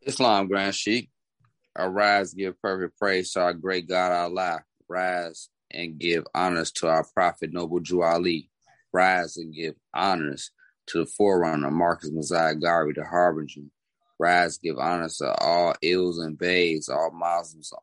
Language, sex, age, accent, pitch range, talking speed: English, male, 20-39, American, 85-95 Hz, 150 wpm